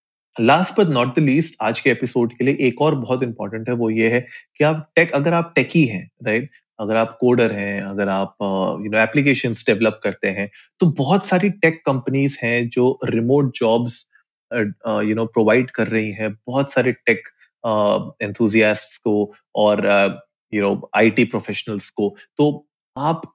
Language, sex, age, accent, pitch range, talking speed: Hindi, male, 30-49, native, 110-140 Hz, 175 wpm